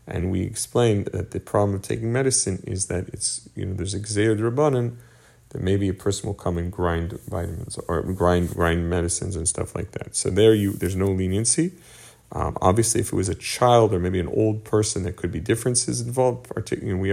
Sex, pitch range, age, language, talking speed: male, 90-115 Hz, 40-59, English, 200 wpm